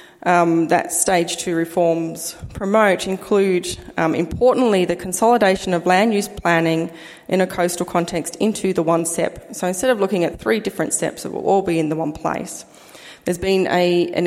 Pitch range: 170-195 Hz